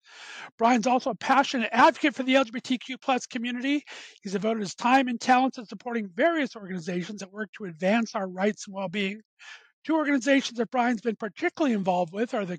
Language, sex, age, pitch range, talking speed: English, male, 50-69, 205-255 Hz, 185 wpm